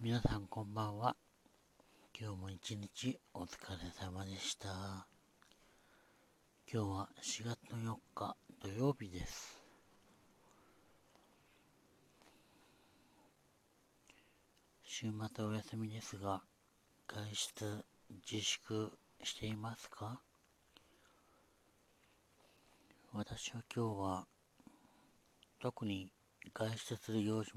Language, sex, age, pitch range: Japanese, male, 60-79, 95-110 Hz